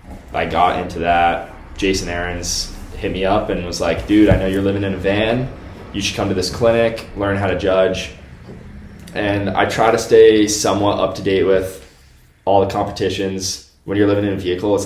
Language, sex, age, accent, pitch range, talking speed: English, male, 20-39, American, 85-100 Hz, 200 wpm